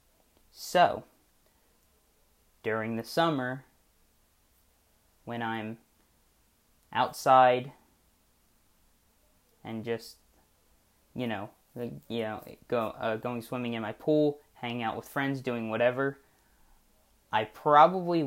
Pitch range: 110-135 Hz